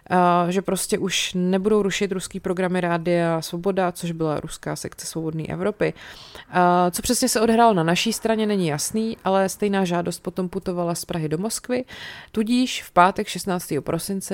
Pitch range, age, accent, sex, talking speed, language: 170-200 Hz, 30-49, native, female, 165 wpm, Czech